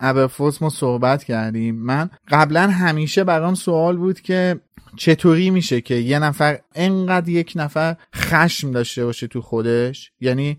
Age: 30-49